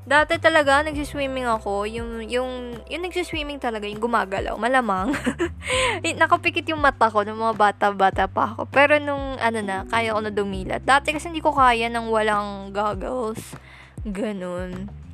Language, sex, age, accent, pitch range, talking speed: Filipino, female, 20-39, native, 205-265 Hz, 150 wpm